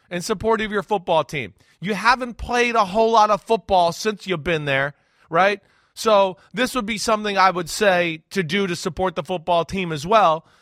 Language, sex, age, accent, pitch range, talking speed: English, male, 30-49, American, 180-230 Hz, 205 wpm